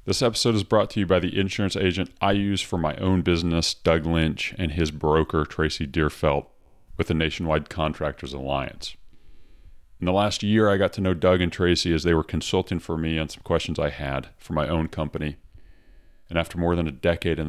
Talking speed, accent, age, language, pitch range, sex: 210 wpm, American, 40-59, English, 75-90 Hz, male